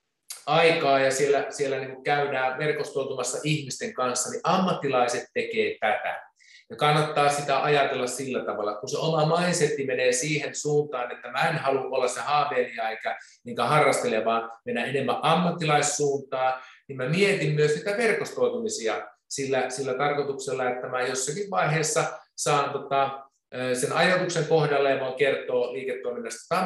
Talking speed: 140 wpm